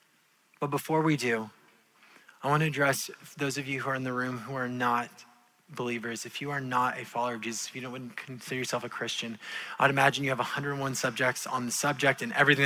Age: 20-39